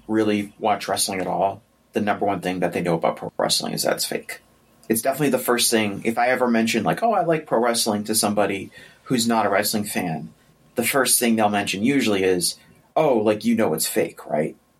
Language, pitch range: English, 100-115 Hz